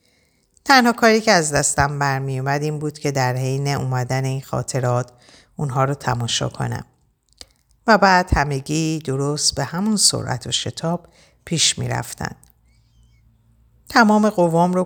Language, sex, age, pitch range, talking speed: Persian, female, 50-69, 125-155 Hz, 130 wpm